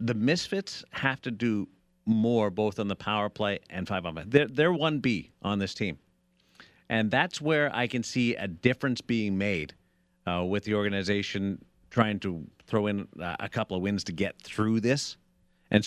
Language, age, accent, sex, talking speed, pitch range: English, 50-69, American, male, 185 wpm, 100-135 Hz